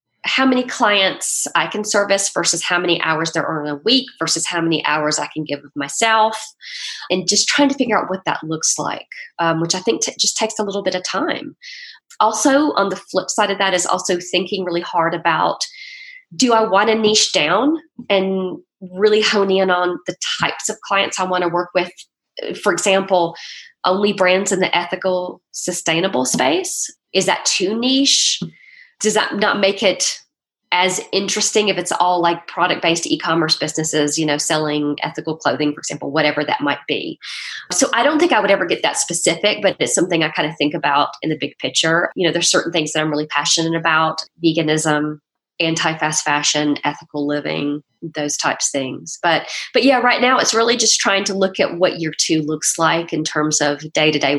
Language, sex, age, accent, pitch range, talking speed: English, female, 20-39, American, 155-210 Hz, 200 wpm